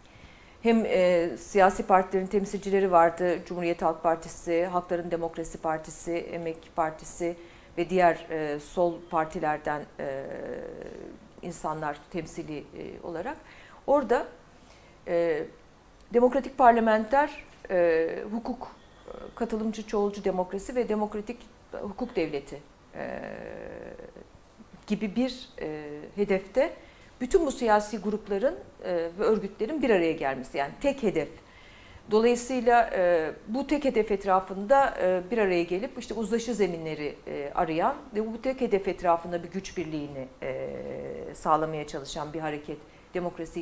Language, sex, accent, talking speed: Turkish, female, native, 115 wpm